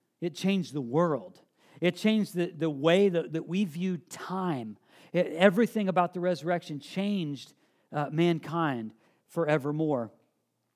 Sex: male